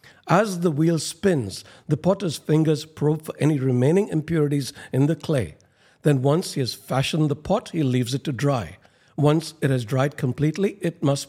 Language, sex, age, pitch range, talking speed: English, male, 60-79, 130-160 Hz, 180 wpm